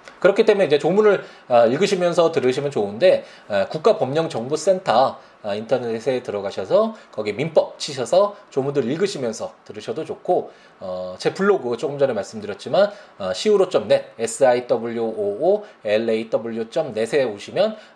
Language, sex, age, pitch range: Korean, male, 20-39, 120-205 Hz